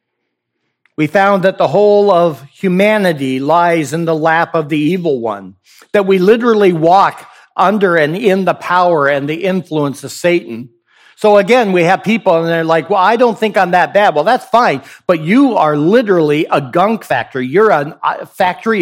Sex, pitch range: male, 150-195 Hz